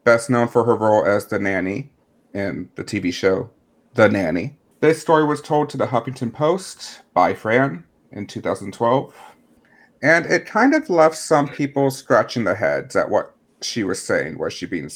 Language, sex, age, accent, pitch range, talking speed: English, male, 40-59, American, 105-135 Hz, 175 wpm